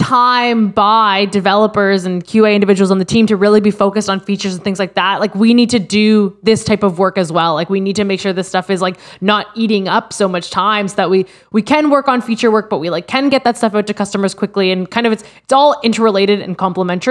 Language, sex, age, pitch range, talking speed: English, female, 20-39, 190-240 Hz, 265 wpm